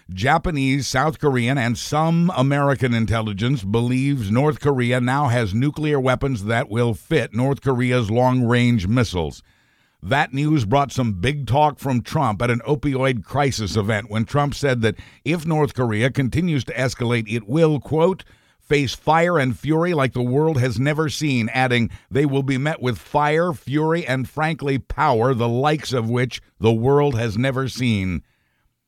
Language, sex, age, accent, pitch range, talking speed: English, male, 50-69, American, 115-140 Hz, 160 wpm